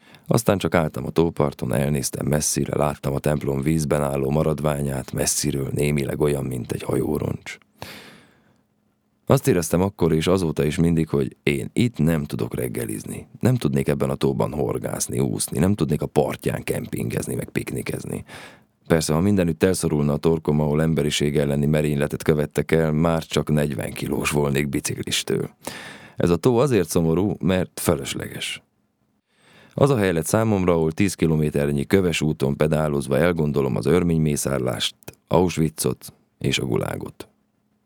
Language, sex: Hungarian, male